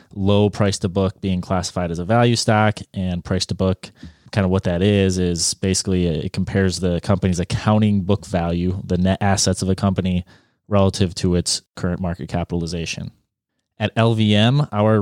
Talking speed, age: 155 wpm, 20-39